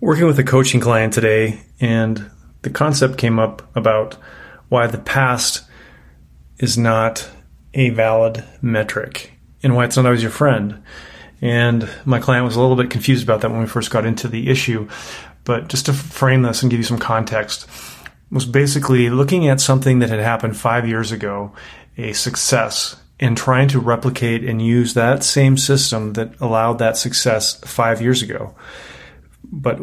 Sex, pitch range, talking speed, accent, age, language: male, 110-130 Hz, 170 wpm, American, 30-49, English